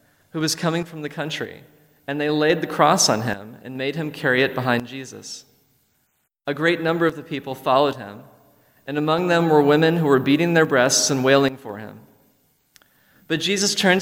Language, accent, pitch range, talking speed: English, American, 130-160 Hz, 195 wpm